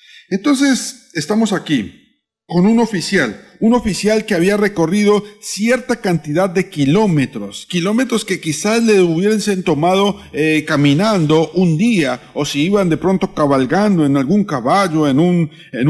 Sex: male